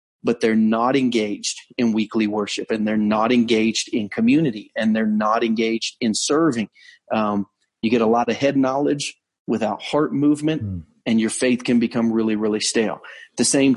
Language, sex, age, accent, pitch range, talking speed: English, male, 40-59, American, 110-135 Hz, 180 wpm